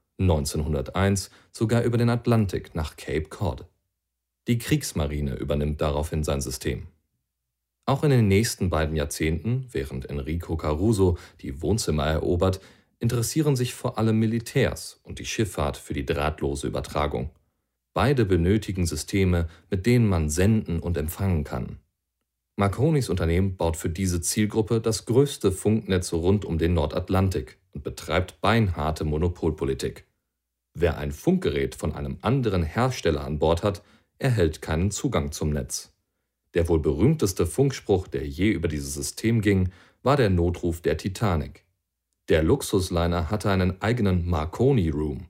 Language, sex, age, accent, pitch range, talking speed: German, male, 40-59, German, 75-105 Hz, 135 wpm